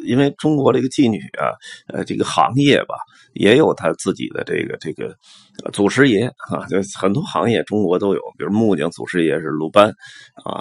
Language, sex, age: Chinese, male, 30-49